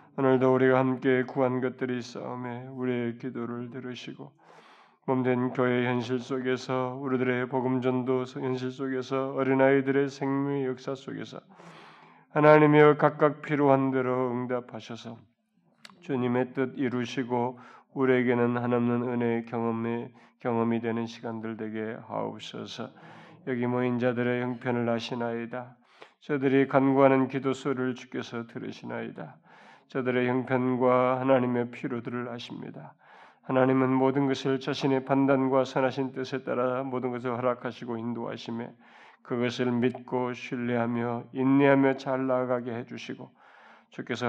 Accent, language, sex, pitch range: native, Korean, male, 120-135 Hz